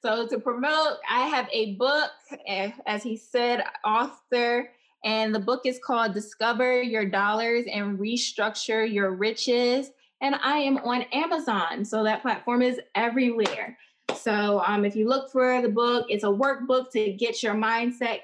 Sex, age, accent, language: female, 10-29, American, English